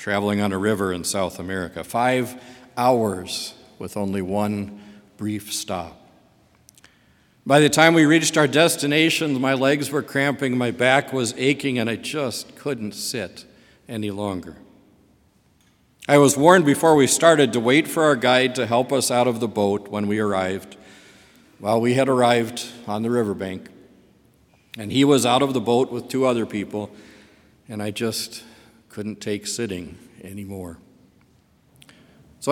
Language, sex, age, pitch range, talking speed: English, male, 50-69, 100-135 Hz, 155 wpm